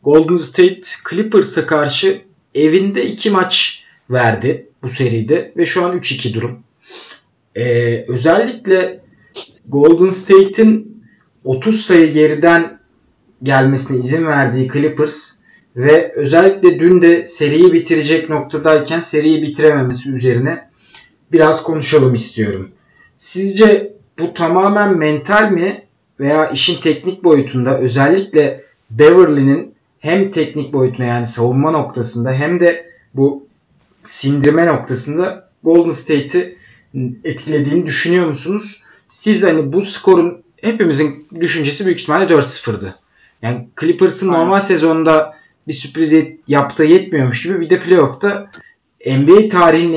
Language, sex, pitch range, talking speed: Turkish, male, 135-180 Hz, 105 wpm